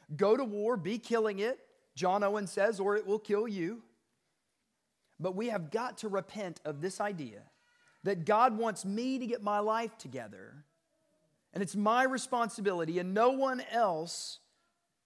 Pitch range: 150-210 Hz